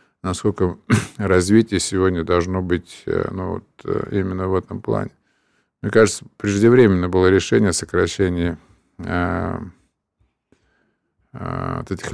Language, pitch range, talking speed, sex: Russian, 90-110 Hz, 85 wpm, male